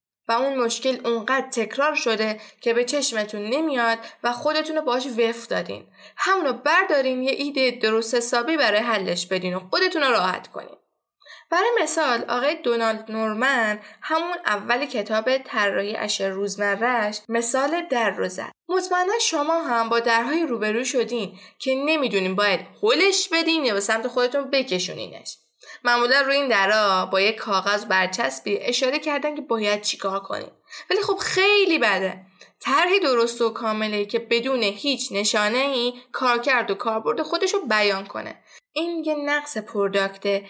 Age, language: 10-29, Persian